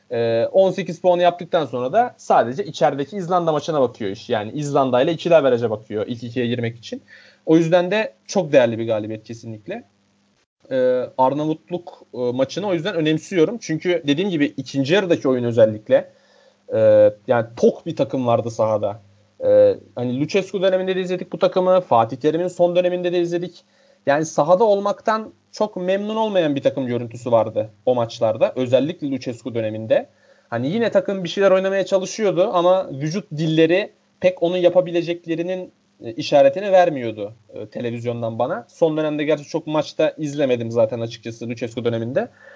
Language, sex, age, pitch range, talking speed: Turkish, male, 30-49, 125-185 Hz, 145 wpm